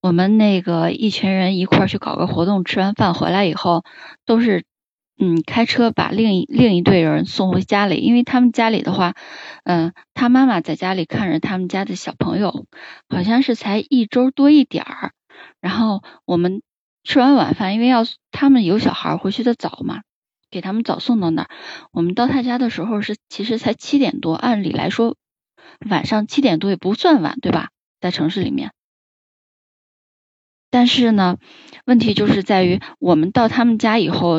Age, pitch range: 10-29, 180-245 Hz